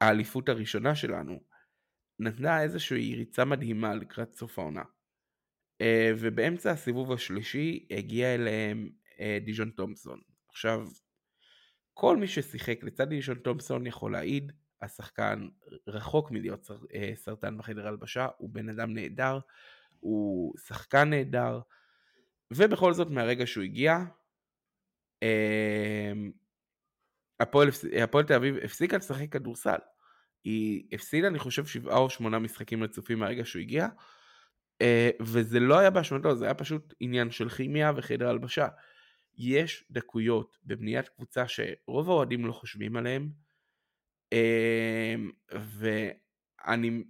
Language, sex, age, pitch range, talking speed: Hebrew, male, 20-39, 110-135 Hz, 110 wpm